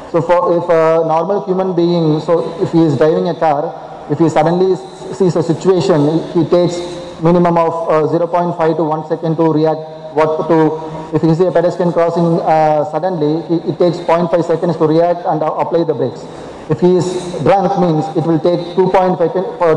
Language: Tamil